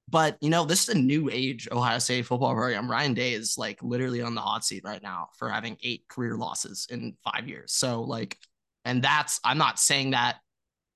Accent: American